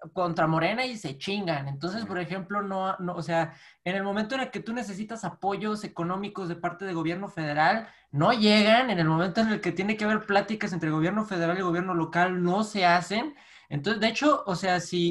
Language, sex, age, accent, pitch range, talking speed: Spanish, male, 20-39, Mexican, 160-200 Hz, 215 wpm